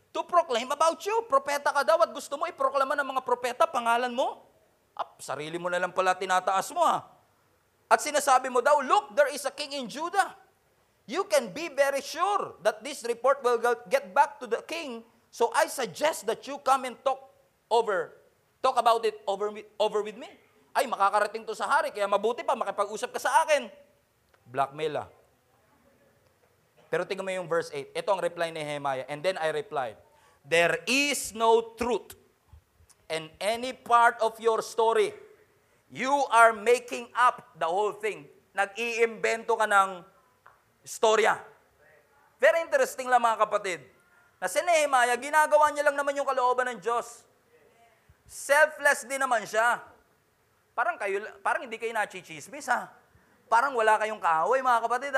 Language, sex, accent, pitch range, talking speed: English, male, Filipino, 215-290 Hz, 165 wpm